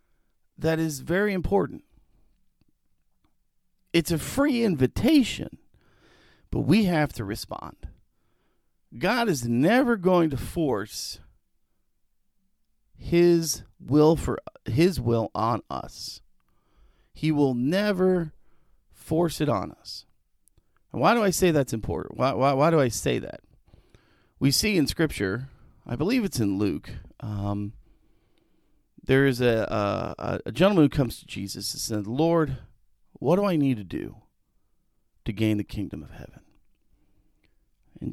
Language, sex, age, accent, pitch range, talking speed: English, male, 40-59, American, 105-165 Hz, 130 wpm